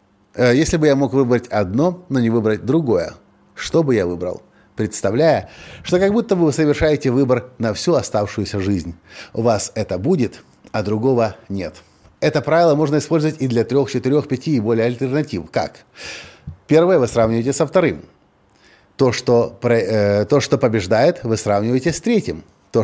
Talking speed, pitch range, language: 160 wpm, 105-145 Hz, Russian